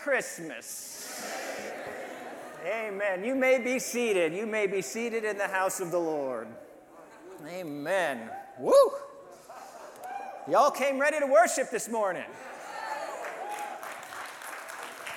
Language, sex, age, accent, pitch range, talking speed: English, male, 40-59, American, 200-285 Hz, 100 wpm